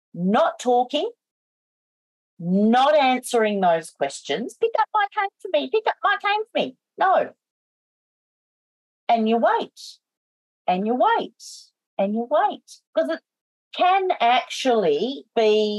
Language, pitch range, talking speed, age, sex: English, 180-265 Hz, 125 wpm, 40-59, female